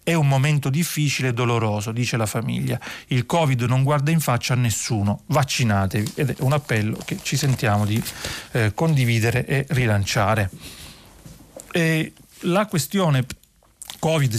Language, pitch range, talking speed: Italian, 110-140 Hz, 140 wpm